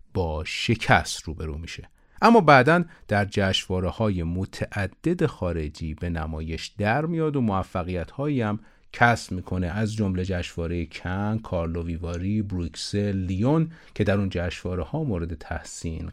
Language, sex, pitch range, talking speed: Persian, male, 90-125 Hz, 130 wpm